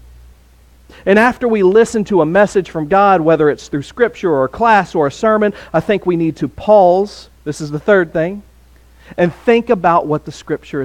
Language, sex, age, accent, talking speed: English, male, 40-59, American, 200 wpm